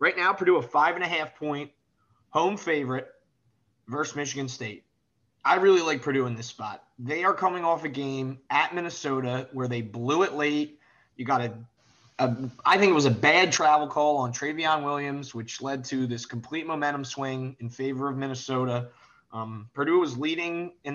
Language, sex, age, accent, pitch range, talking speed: English, male, 20-39, American, 120-150 Hz, 180 wpm